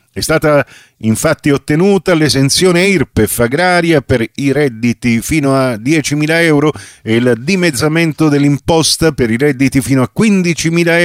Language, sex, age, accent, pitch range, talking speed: Italian, male, 50-69, native, 115-155 Hz, 130 wpm